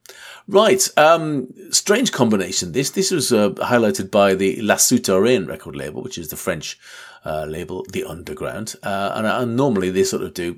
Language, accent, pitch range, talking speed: English, British, 95-140 Hz, 175 wpm